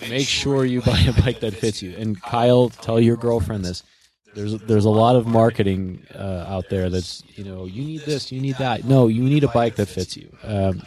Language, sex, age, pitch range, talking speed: English, male, 20-39, 95-115 Hz, 230 wpm